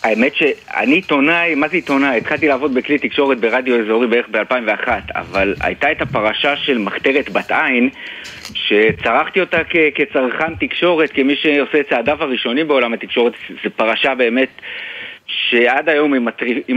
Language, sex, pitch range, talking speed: English, male, 120-150 Hz, 135 wpm